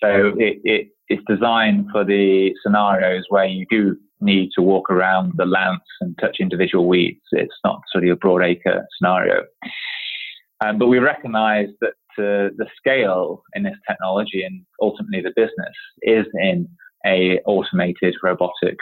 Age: 20-39